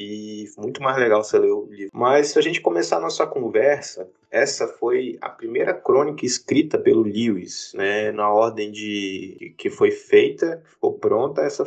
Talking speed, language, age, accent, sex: 175 wpm, Portuguese, 20-39, Brazilian, male